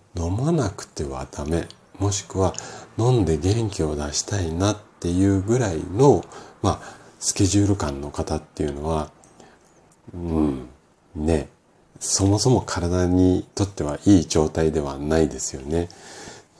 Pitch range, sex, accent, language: 80-100 Hz, male, native, Japanese